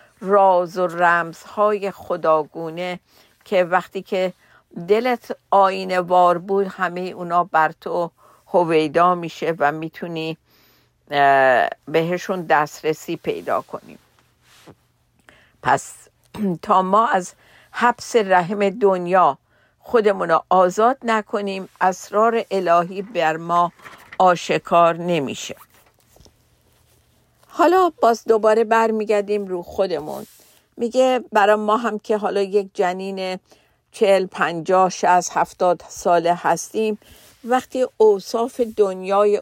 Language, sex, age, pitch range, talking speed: Persian, female, 50-69, 175-210 Hz, 95 wpm